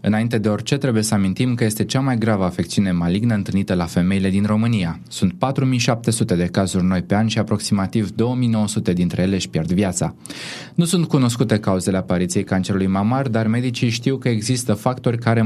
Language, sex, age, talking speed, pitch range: Romanian, male, 20-39, 185 wpm, 100-130 Hz